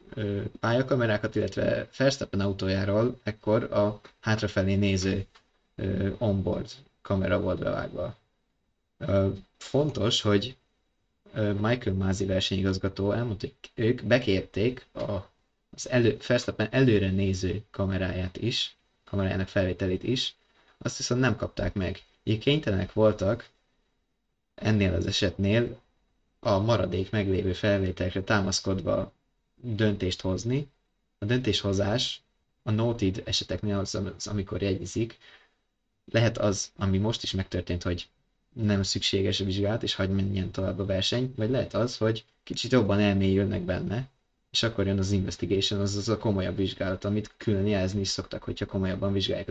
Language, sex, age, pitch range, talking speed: Hungarian, male, 20-39, 95-110 Hz, 120 wpm